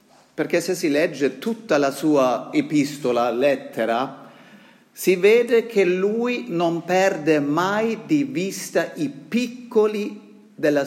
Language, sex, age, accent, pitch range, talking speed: Italian, male, 40-59, native, 145-200 Hz, 115 wpm